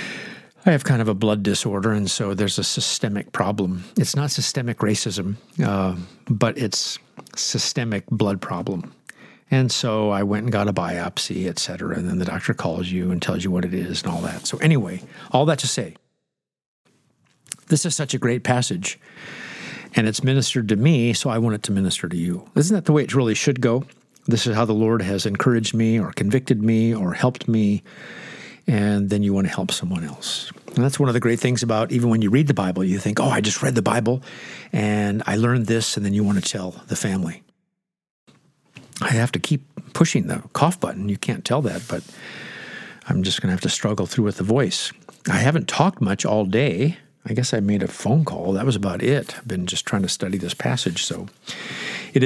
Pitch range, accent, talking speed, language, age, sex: 100-135 Hz, American, 215 wpm, English, 50-69, male